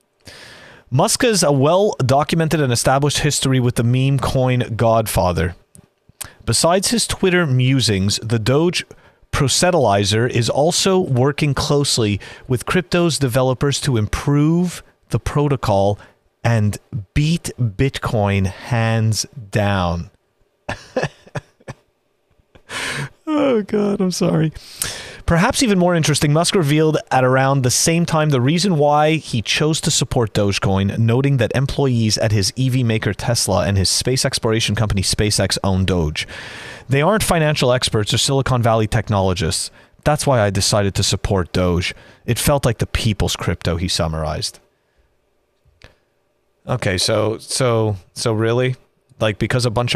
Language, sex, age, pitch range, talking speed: English, male, 30-49, 105-145 Hz, 125 wpm